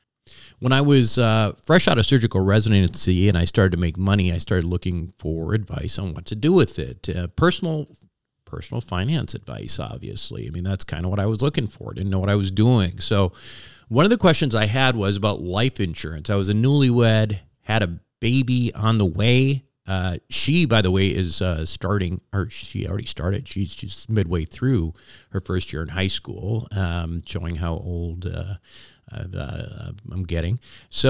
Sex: male